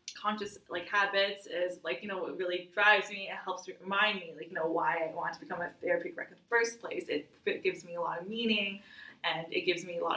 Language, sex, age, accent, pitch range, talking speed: English, female, 20-39, American, 180-245 Hz, 260 wpm